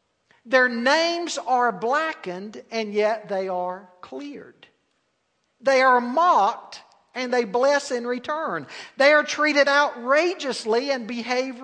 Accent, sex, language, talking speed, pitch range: American, male, English, 120 wpm, 220-295 Hz